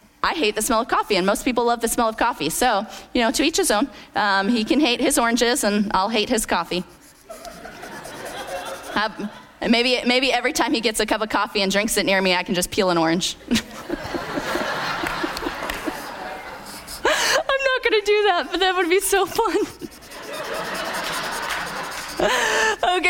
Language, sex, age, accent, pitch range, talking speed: English, female, 30-49, American, 210-315 Hz, 175 wpm